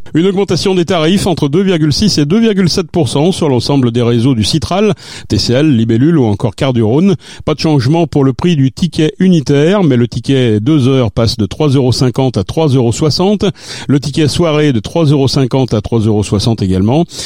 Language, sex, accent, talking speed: French, male, French, 160 wpm